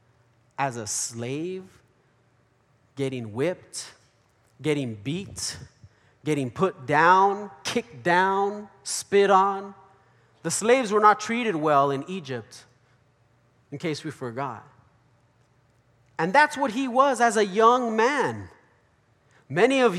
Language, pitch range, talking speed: English, 120-195 Hz, 110 wpm